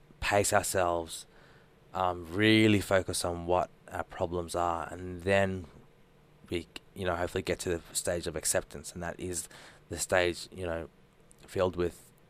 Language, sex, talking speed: English, male, 150 wpm